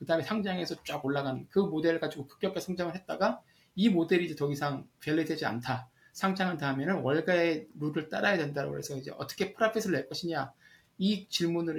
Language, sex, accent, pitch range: Korean, male, native, 135-180 Hz